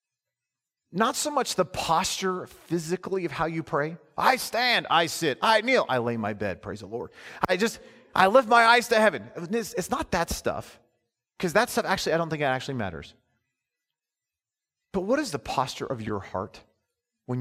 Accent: American